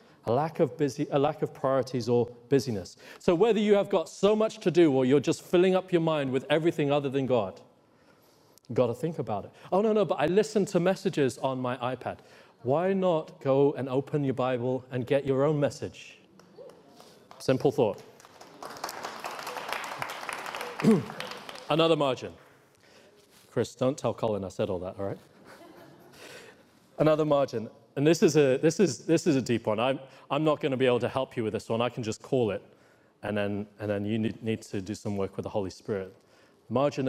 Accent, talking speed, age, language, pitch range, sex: British, 195 wpm, 40-59, English, 120-165 Hz, male